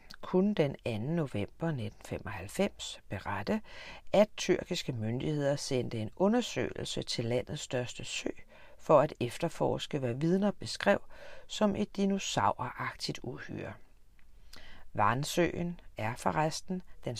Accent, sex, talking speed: native, female, 110 wpm